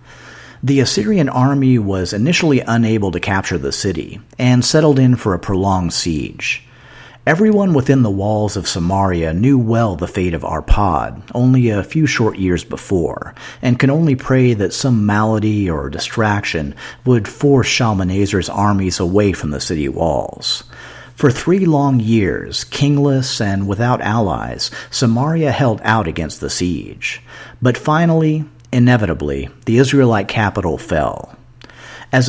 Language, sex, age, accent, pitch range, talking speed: English, male, 50-69, American, 95-135 Hz, 140 wpm